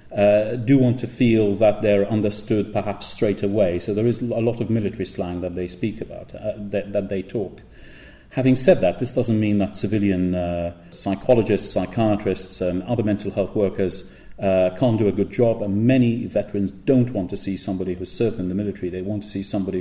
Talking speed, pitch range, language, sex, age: 220 wpm, 95-110 Hz, English, male, 40-59